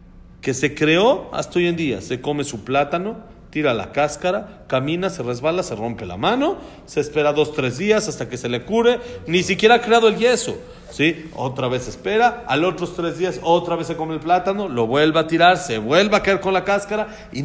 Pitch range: 120-185 Hz